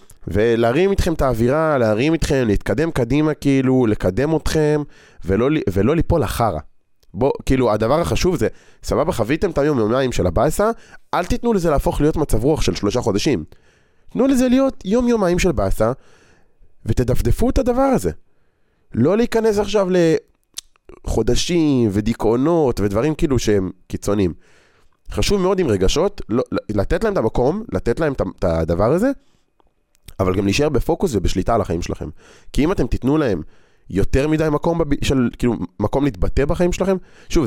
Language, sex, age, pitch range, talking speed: Hebrew, male, 30-49, 100-160 Hz, 150 wpm